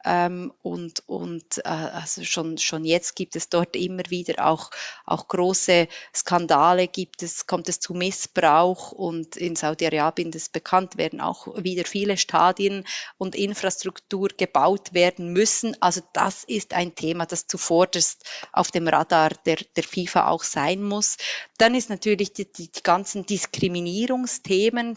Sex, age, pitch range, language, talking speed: female, 30-49, 175-195 Hz, German, 145 wpm